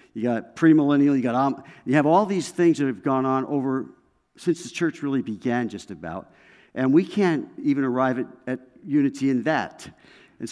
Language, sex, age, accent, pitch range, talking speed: English, male, 50-69, American, 120-150 Hz, 190 wpm